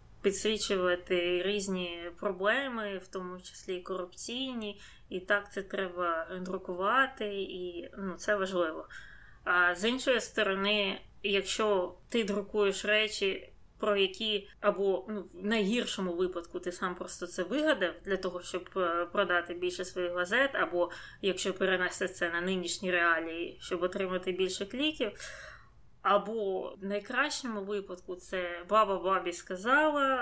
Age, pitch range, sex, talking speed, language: 20-39, 180-210 Hz, female, 125 wpm, Ukrainian